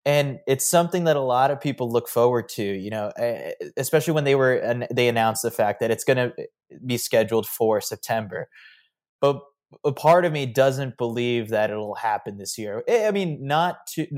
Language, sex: English, male